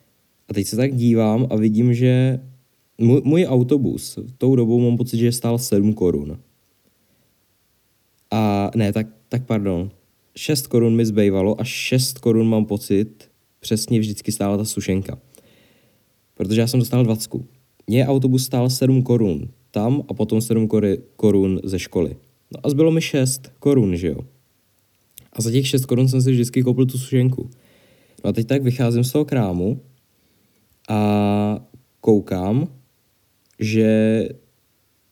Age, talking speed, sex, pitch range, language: 20-39, 145 wpm, male, 105-130 Hz, Czech